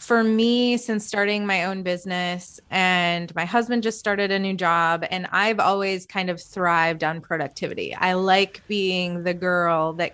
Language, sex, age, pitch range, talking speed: English, female, 20-39, 180-215 Hz, 170 wpm